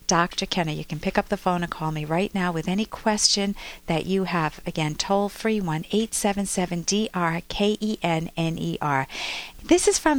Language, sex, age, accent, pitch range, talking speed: English, female, 50-69, American, 175-250 Hz, 190 wpm